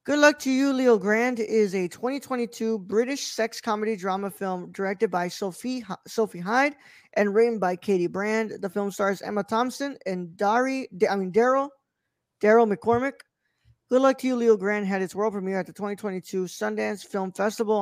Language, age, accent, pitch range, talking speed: English, 20-39, American, 190-235 Hz, 175 wpm